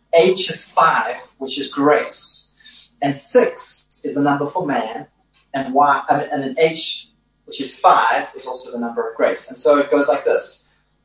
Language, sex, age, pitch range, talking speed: English, male, 20-39, 185-240 Hz, 190 wpm